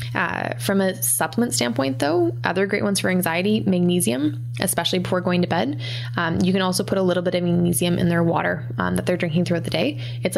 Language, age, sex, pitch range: English, 20-39, female, 120-180 Hz